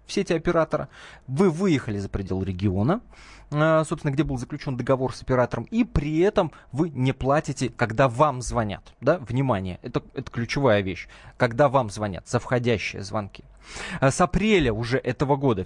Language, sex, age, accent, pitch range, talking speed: Russian, male, 20-39, native, 110-150 Hz, 155 wpm